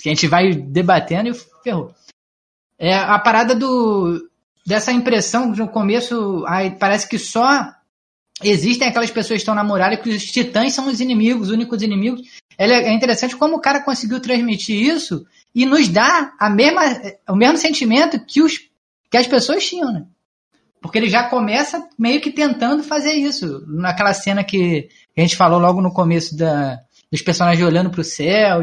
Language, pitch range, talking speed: Portuguese, 190-250 Hz, 175 wpm